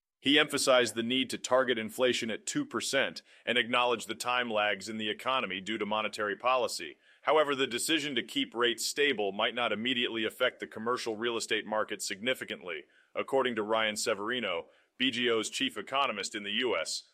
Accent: American